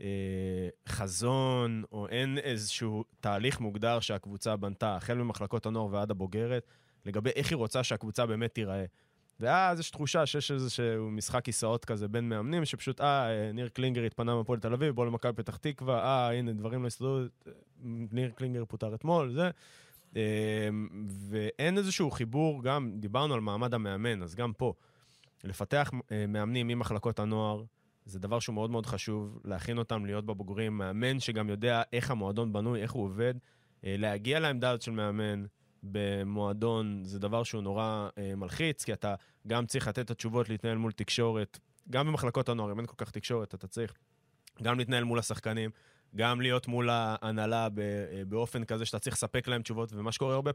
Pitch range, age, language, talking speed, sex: 105-125 Hz, 20-39, Hebrew, 160 wpm, male